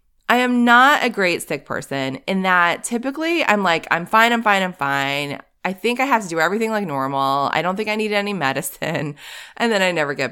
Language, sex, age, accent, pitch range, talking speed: English, female, 20-39, American, 155-220 Hz, 225 wpm